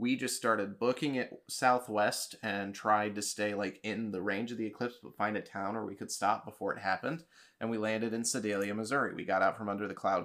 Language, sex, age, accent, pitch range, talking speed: English, male, 20-39, American, 100-115 Hz, 240 wpm